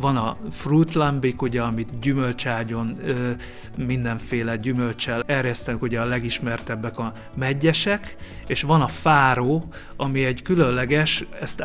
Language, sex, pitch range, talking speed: Hungarian, male, 120-145 Hz, 115 wpm